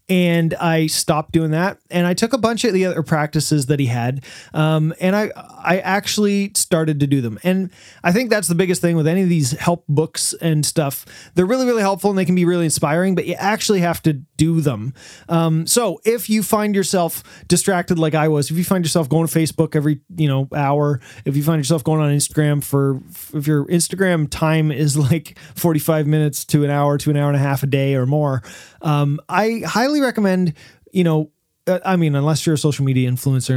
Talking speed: 220 wpm